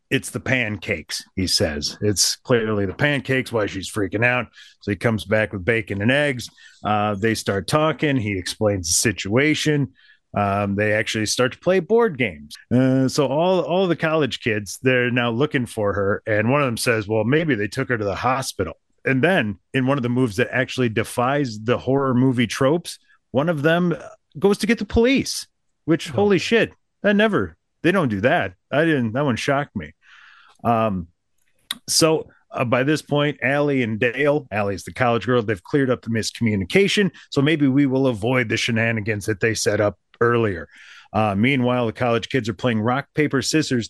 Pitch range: 110-145 Hz